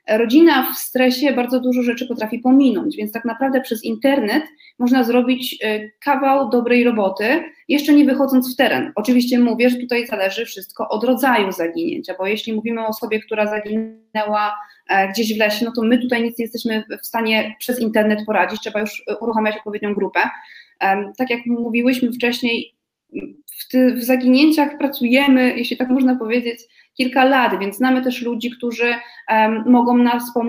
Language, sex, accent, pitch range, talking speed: Polish, female, native, 220-260 Hz, 155 wpm